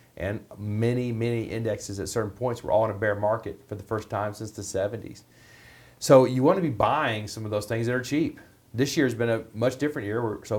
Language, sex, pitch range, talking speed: English, male, 105-130 Hz, 240 wpm